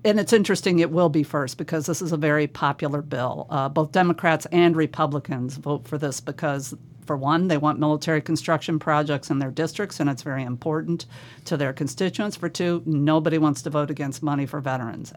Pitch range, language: 145-170 Hz, English